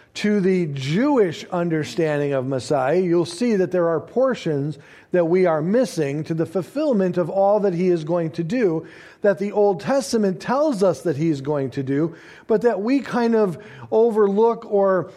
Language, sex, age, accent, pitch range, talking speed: English, male, 50-69, American, 170-220 Hz, 180 wpm